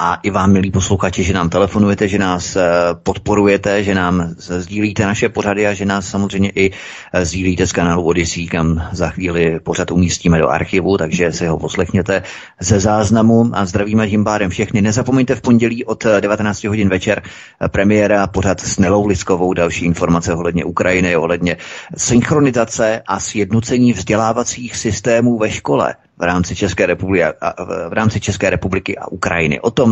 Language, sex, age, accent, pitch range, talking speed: Czech, male, 30-49, native, 90-105 Hz, 160 wpm